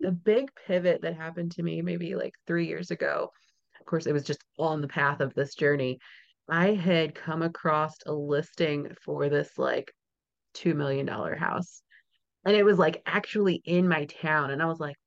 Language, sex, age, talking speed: English, female, 30-49, 190 wpm